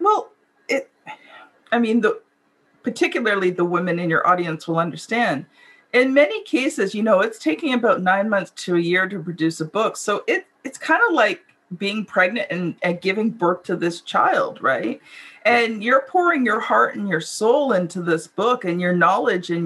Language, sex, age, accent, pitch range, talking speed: English, female, 40-59, American, 190-250 Hz, 185 wpm